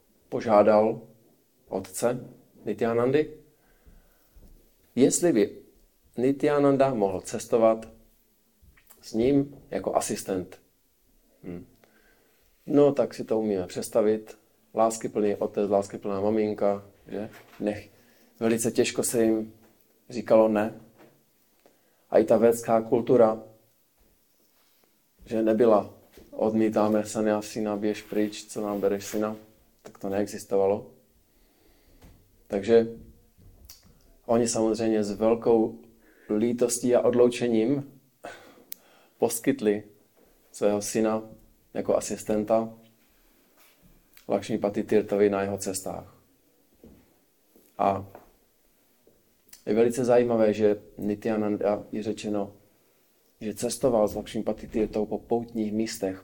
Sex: male